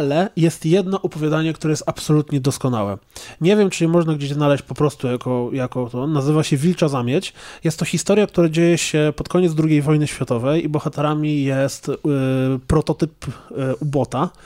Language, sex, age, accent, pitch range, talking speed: Polish, male, 20-39, native, 145-180 Hz, 170 wpm